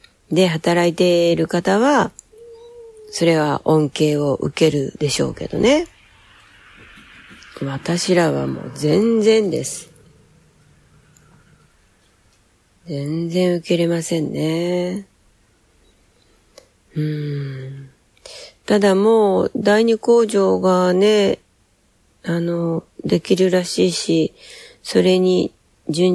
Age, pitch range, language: 40-59, 140-185 Hz, Japanese